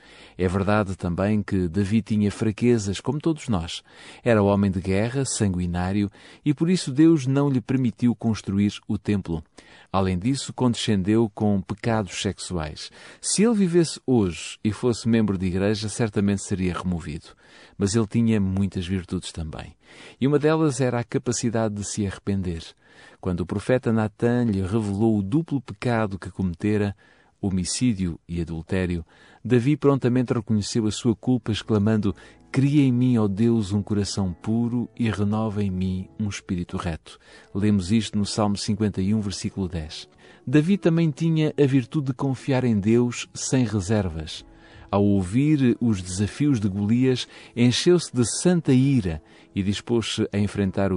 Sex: male